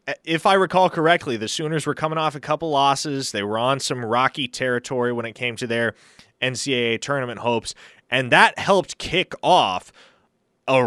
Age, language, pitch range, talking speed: 20-39, English, 115-155 Hz, 175 wpm